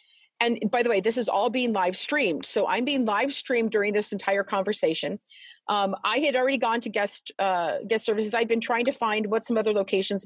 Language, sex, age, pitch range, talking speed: English, female, 40-59, 195-255 Hz, 220 wpm